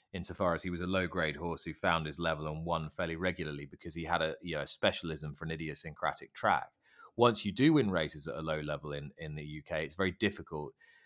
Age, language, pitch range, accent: 30-49, English, 85-105 Hz, British